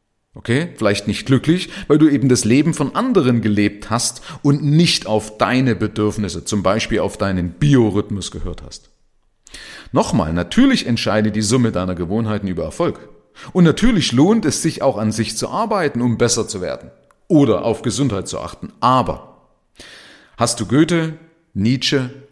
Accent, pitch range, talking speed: German, 95-155 Hz, 155 wpm